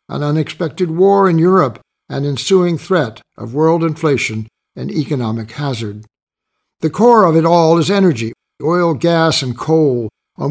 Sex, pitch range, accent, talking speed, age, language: male, 130-170 Hz, American, 150 wpm, 60-79, English